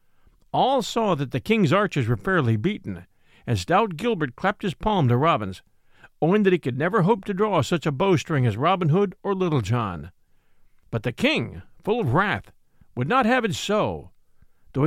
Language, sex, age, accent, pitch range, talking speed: English, male, 50-69, American, 130-205 Hz, 185 wpm